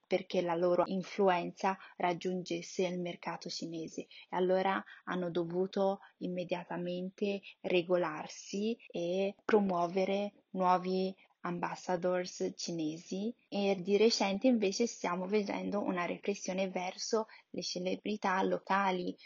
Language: Italian